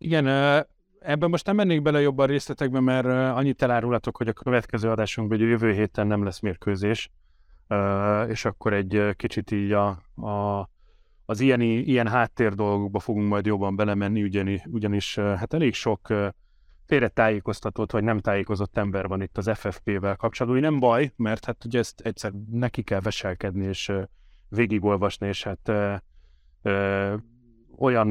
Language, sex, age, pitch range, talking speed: Hungarian, male, 30-49, 100-125 Hz, 145 wpm